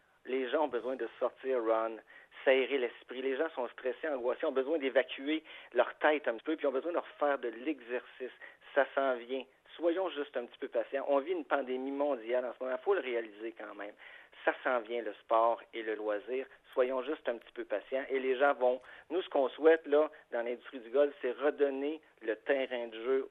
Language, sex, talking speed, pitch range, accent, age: French, male, 220 wpm, 125-150 Hz, Canadian, 50-69